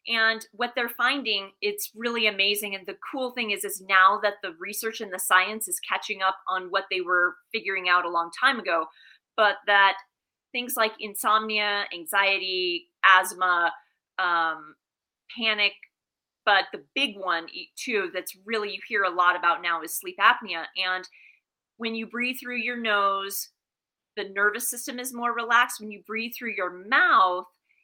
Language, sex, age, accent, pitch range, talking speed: English, female, 30-49, American, 195-235 Hz, 165 wpm